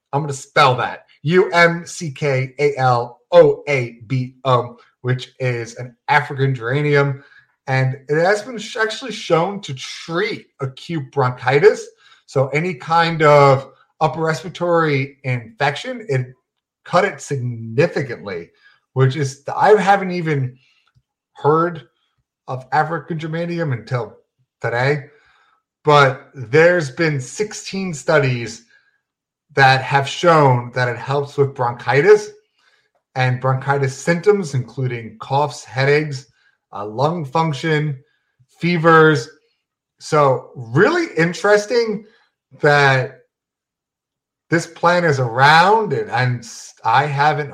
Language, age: English, 30-49